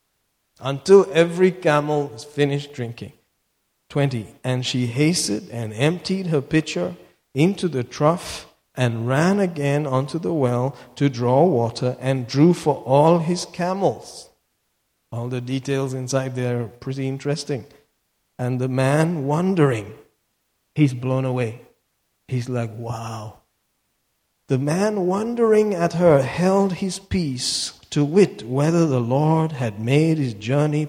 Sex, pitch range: male, 125-160 Hz